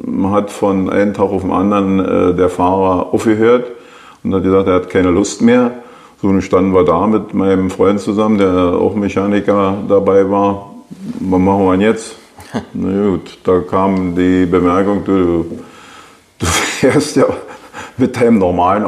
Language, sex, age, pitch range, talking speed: German, male, 50-69, 95-110 Hz, 165 wpm